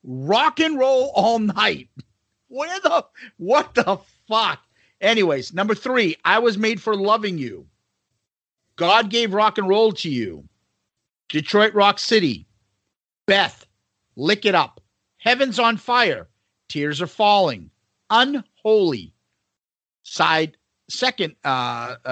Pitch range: 140-230 Hz